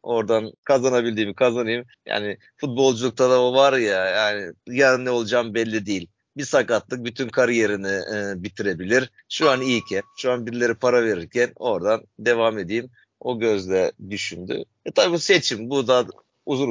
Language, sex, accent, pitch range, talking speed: Turkish, male, native, 110-135 Hz, 150 wpm